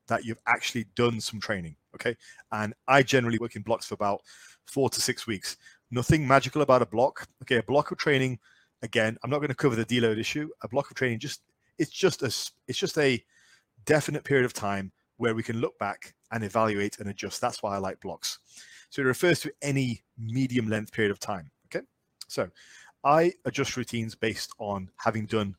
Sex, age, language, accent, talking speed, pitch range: male, 30-49, English, British, 200 wpm, 110-135 Hz